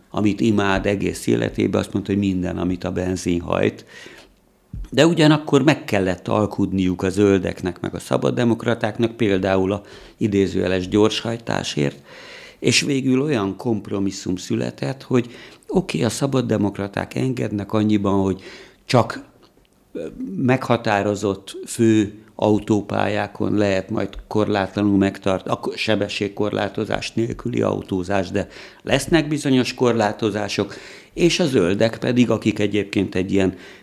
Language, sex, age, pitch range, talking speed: Hungarian, male, 60-79, 95-115 Hz, 110 wpm